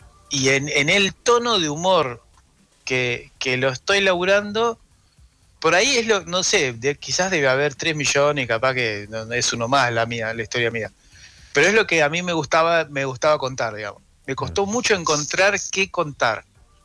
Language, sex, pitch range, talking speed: Spanish, male, 120-165 Hz, 190 wpm